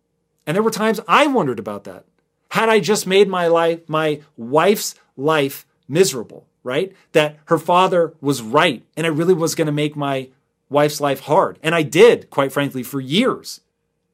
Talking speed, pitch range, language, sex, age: 175 wpm, 120-165 Hz, English, male, 30-49